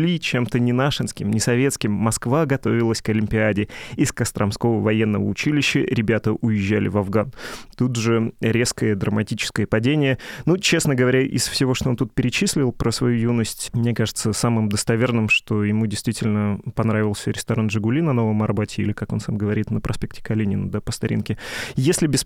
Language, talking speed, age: Russian, 160 wpm, 20-39